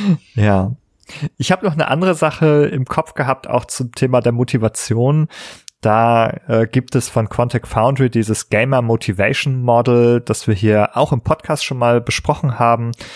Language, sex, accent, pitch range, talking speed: German, male, German, 105-125 Hz, 165 wpm